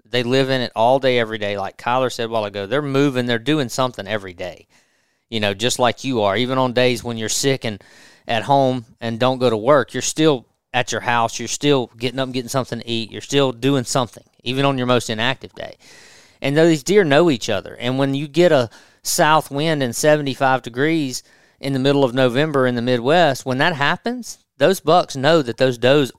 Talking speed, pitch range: 225 wpm, 115-140 Hz